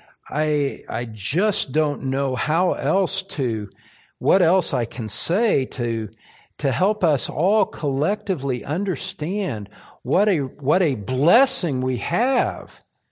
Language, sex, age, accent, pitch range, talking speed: English, male, 50-69, American, 115-150 Hz, 125 wpm